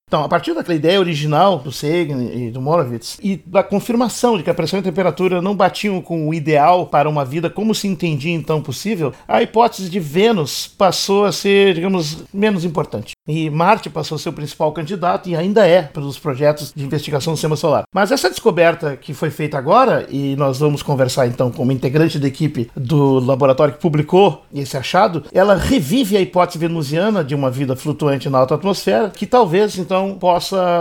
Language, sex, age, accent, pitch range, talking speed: Portuguese, male, 50-69, Brazilian, 145-185 Hz, 195 wpm